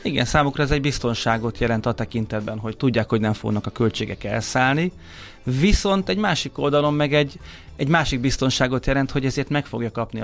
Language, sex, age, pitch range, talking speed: Hungarian, male, 30-49, 110-135 Hz, 180 wpm